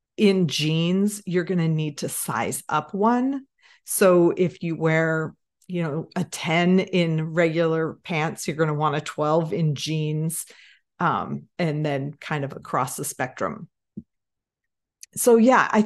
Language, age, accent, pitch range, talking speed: English, 40-59, American, 160-205 Hz, 150 wpm